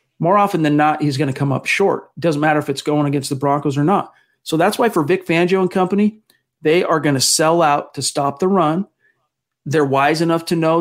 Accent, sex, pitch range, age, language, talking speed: American, male, 140-160 Hz, 40-59, English, 245 wpm